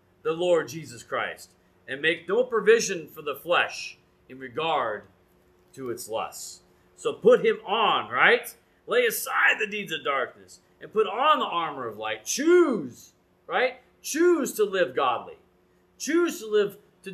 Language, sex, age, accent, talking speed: English, male, 30-49, American, 155 wpm